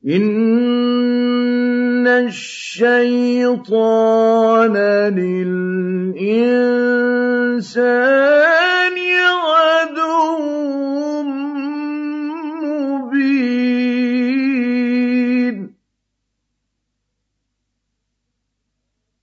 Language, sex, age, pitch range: Arabic, male, 50-69, 145-245 Hz